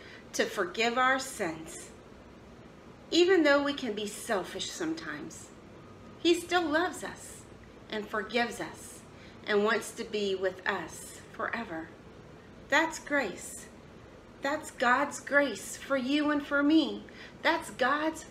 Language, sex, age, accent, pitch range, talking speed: English, female, 40-59, American, 190-285 Hz, 120 wpm